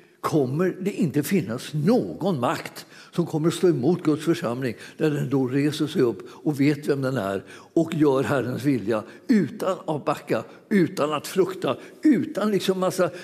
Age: 60-79